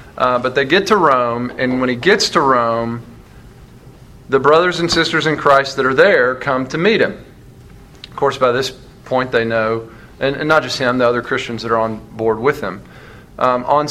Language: English